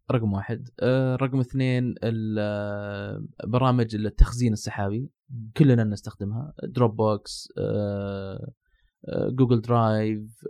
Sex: male